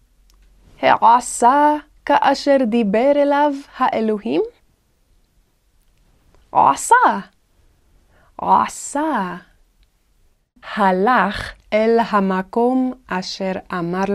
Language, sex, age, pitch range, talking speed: Hebrew, female, 20-39, 190-275 Hz, 50 wpm